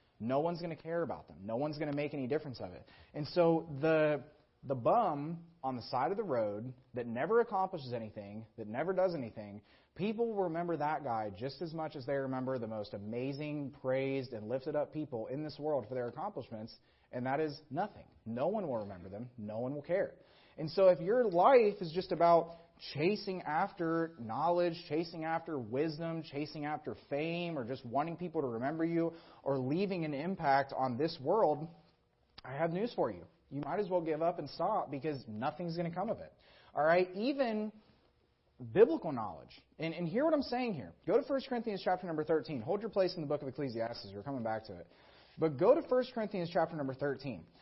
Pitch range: 135-180 Hz